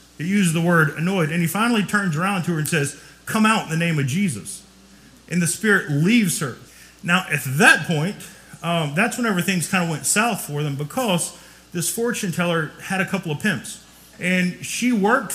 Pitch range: 160-195 Hz